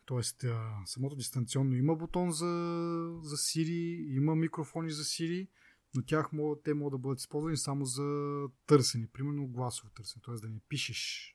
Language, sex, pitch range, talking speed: Bulgarian, male, 125-155 Hz, 150 wpm